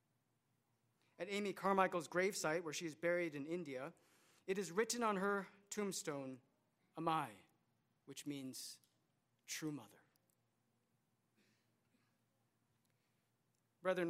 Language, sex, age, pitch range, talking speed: English, male, 40-59, 135-200 Hz, 95 wpm